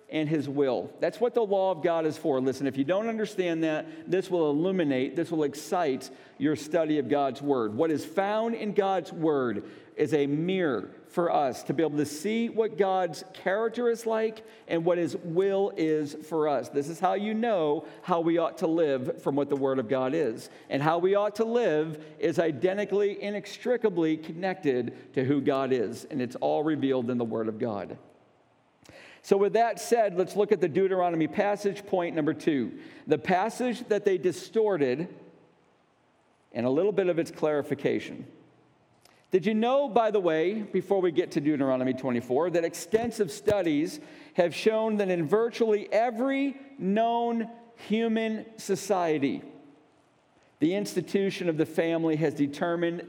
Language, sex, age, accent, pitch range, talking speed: English, male, 50-69, American, 155-210 Hz, 170 wpm